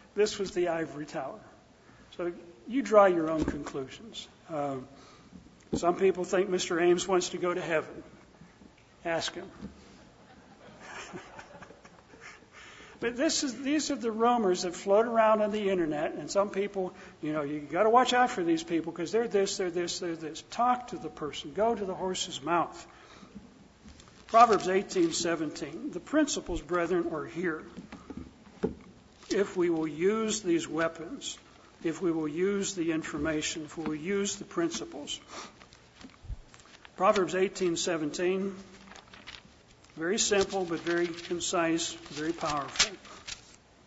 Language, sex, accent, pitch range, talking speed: English, male, American, 165-200 Hz, 140 wpm